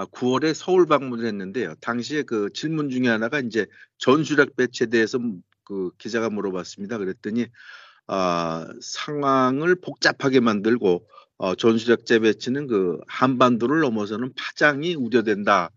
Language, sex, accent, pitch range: Korean, male, native, 115-140 Hz